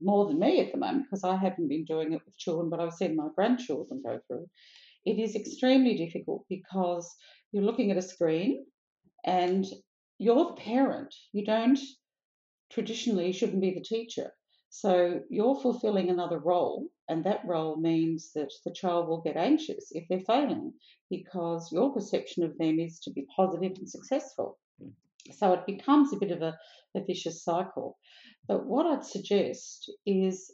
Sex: female